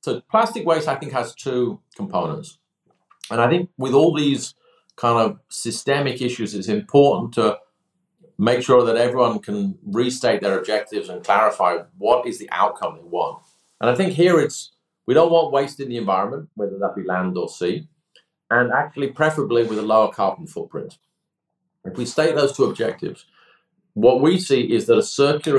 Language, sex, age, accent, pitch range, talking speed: English, male, 50-69, British, 115-170 Hz, 180 wpm